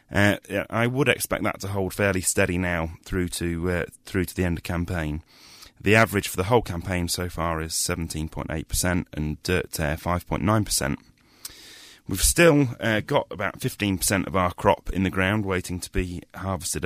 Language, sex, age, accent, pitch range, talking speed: English, male, 30-49, British, 85-100 Hz, 195 wpm